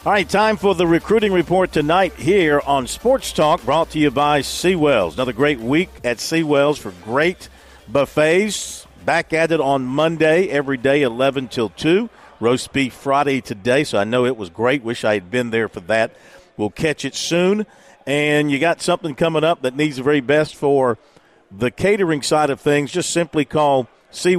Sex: male